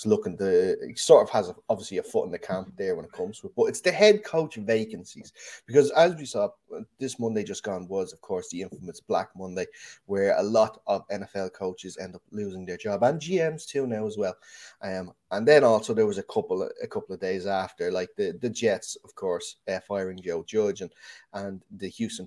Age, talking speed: 30-49, 230 wpm